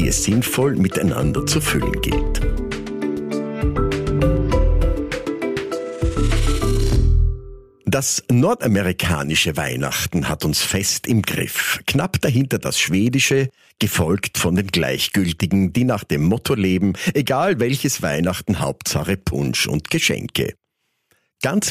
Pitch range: 85-125 Hz